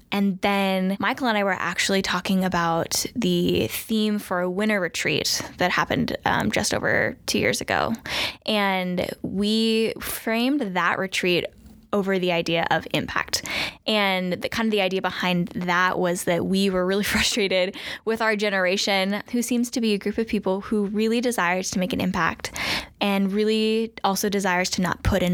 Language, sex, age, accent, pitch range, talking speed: English, female, 10-29, American, 185-220 Hz, 175 wpm